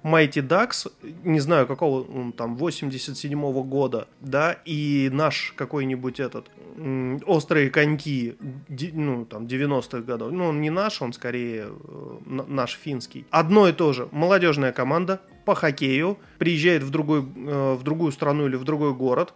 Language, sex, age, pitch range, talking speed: Russian, male, 20-39, 140-175 Hz, 155 wpm